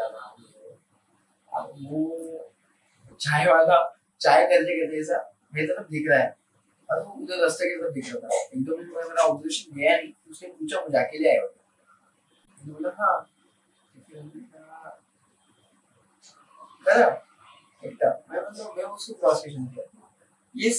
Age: 30-49